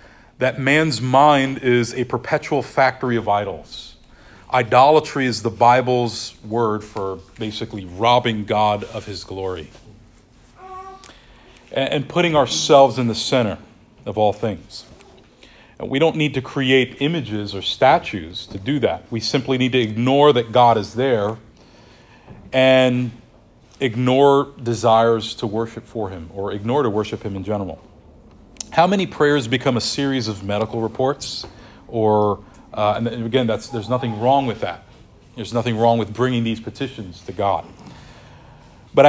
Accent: American